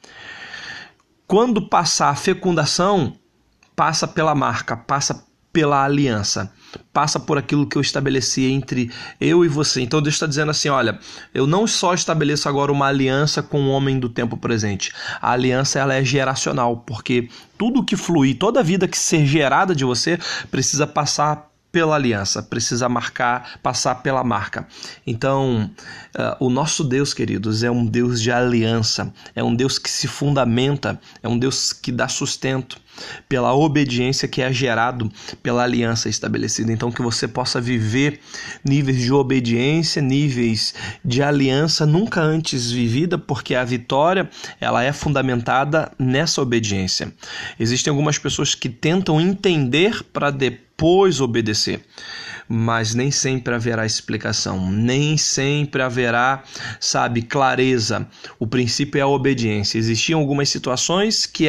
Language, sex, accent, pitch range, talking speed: Portuguese, male, Brazilian, 120-150 Hz, 140 wpm